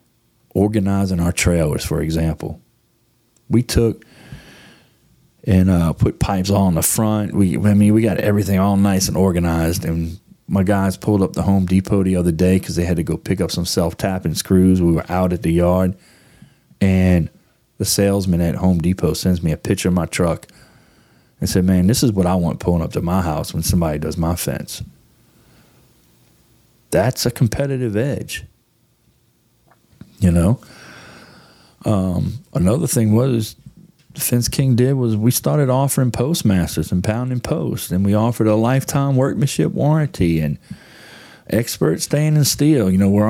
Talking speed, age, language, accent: 165 wpm, 30-49, English, American